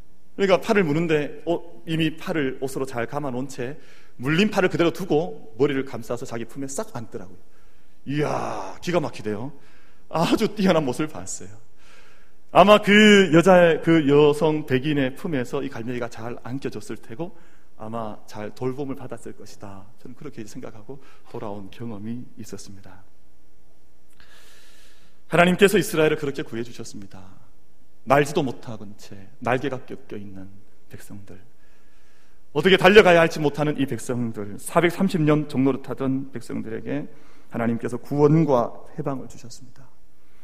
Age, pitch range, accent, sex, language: 40-59, 110-160 Hz, native, male, Korean